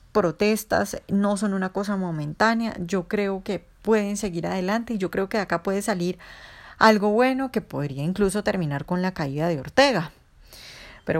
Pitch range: 165-220 Hz